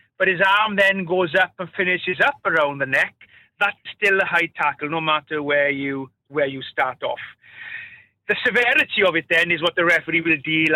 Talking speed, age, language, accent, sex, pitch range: 200 wpm, 30-49, English, British, male, 165-200 Hz